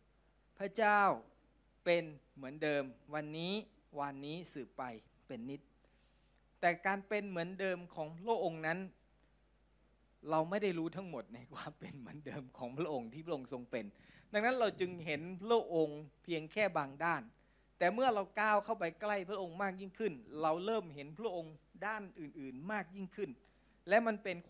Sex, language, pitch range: male, Thai, 155-205 Hz